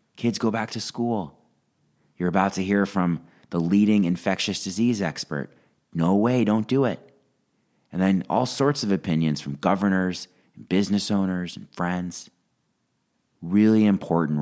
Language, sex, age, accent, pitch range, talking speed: English, male, 30-49, American, 75-100 Hz, 140 wpm